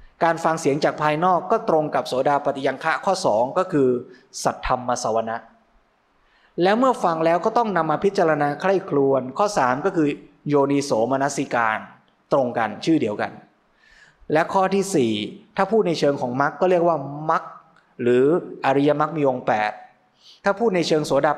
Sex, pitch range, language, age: male, 135-180 Hz, Thai, 20-39